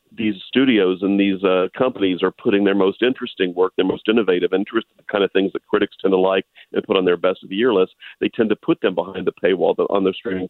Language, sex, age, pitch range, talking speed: English, male, 40-59, 95-105 Hz, 255 wpm